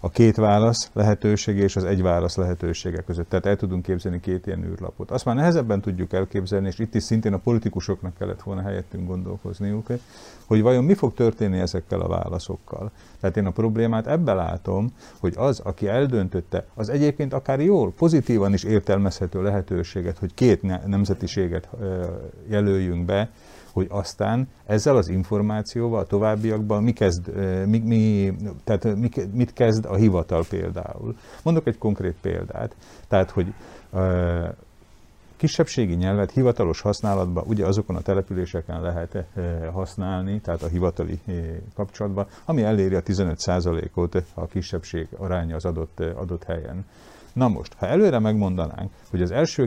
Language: Hungarian